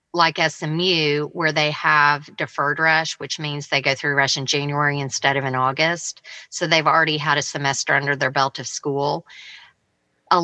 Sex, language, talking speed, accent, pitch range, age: female, English, 180 wpm, American, 140-160 Hz, 30-49